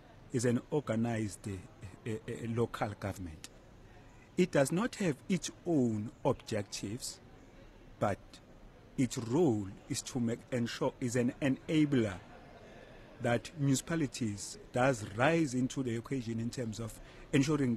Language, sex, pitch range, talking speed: English, male, 110-140 Hz, 120 wpm